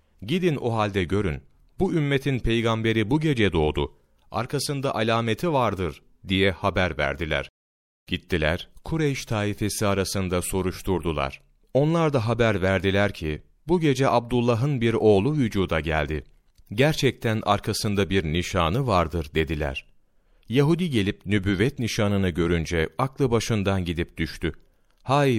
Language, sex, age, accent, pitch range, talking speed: Turkish, male, 40-59, native, 90-120 Hz, 115 wpm